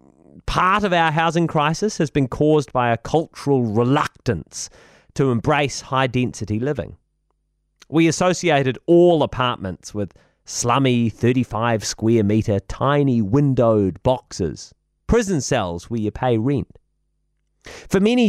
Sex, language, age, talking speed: male, English, 30-49, 110 wpm